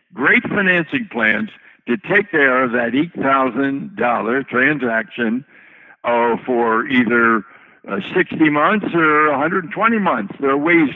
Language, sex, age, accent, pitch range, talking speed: English, male, 60-79, American, 135-185 Hz, 120 wpm